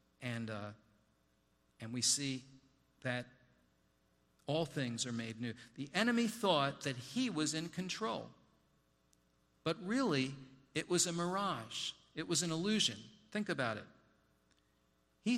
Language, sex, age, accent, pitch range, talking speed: English, male, 50-69, American, 125-170 Hz, 130 wpm